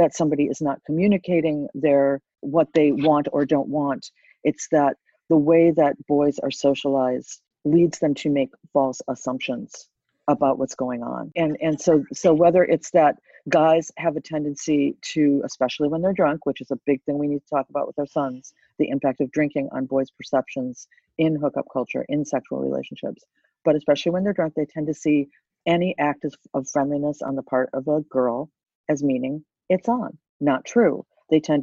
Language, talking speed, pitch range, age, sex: English, 190 wpm, 140-165 Hz, 50-69, female